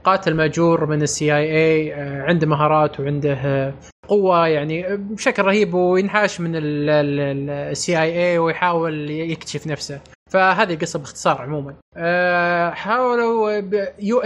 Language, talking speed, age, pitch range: Arabic, 115 wpm, 20-39, 155-190 Hz